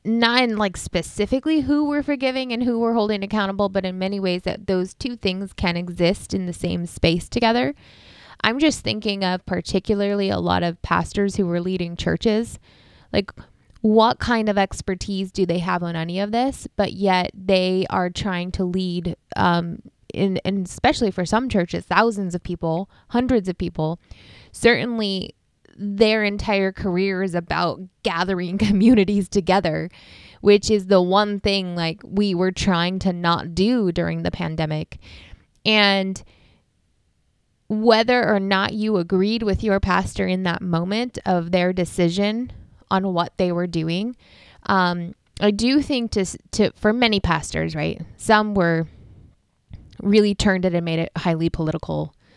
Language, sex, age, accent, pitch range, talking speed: English, female, 10-29, American, 175-215 Hz, 155 wpm